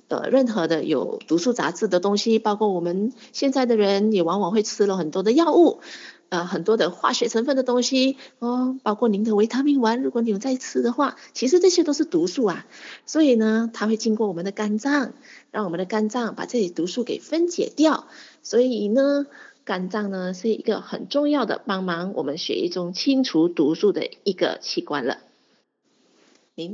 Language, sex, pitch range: Chinese, female, 185-255 Hz